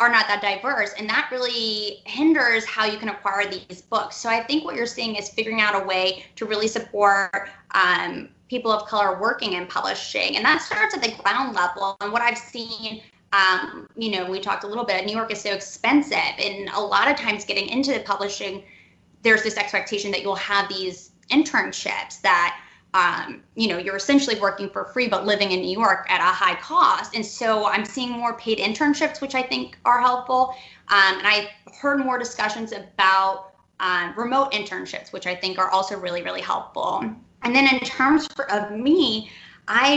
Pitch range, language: 200-250 Hz, English